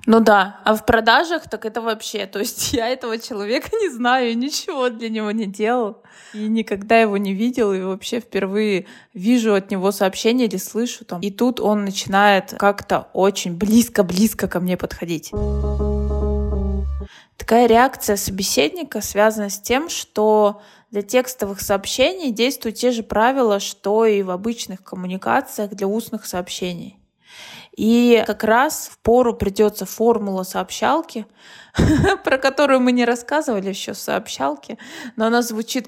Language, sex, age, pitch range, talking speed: Russian, female, 20-39, 195-235 Hz, 140 wpm